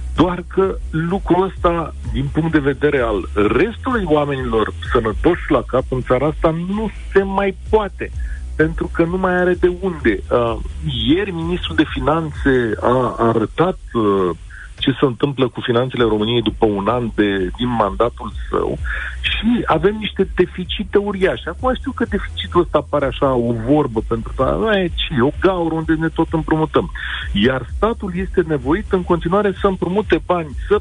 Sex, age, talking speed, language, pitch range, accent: male, 50-69, 160 wpm, Romanian, 120-190 Hz, native